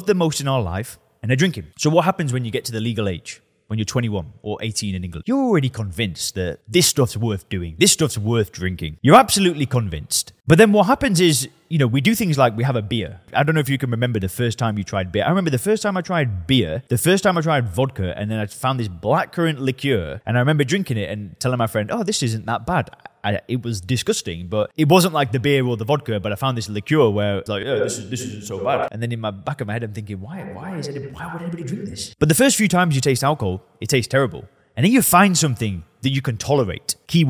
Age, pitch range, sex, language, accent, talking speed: 20-39, 105-150 Hz, male, English, British, 270 wpm